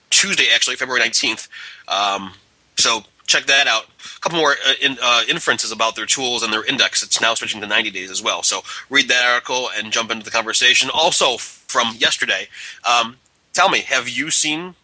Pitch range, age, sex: 110-125 Hz, 30-49, male